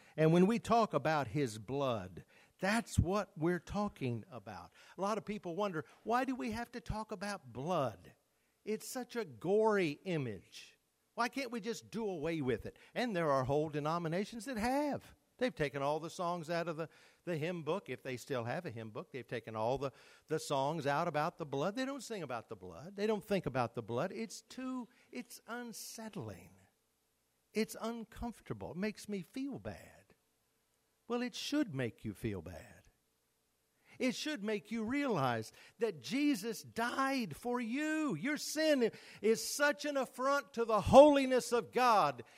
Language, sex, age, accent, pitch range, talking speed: English, male, 50-69, American, 145-235 Hz, 175 wpm